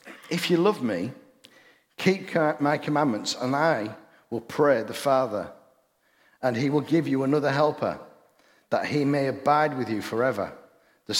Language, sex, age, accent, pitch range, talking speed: English, male, 50-69, British, 115-150 Hz, 150 wpm